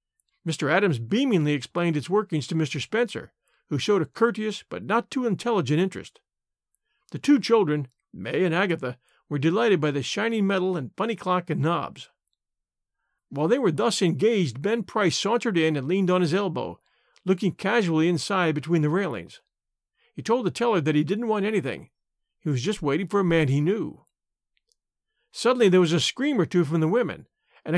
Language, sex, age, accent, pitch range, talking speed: English, male, 50-69, American, 160-220 Hz, 180 wpm